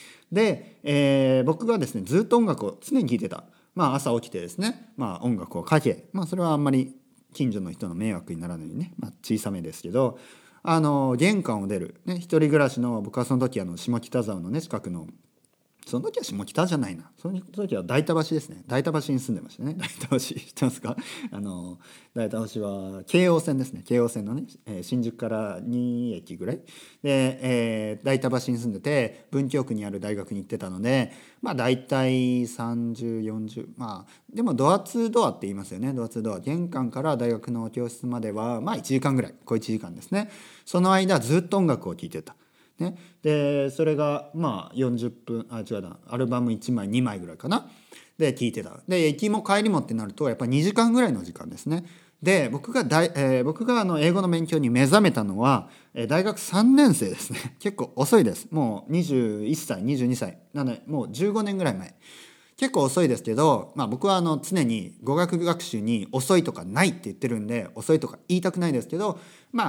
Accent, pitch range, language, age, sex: native, 115-175 Hz, Japanese, 40-59, male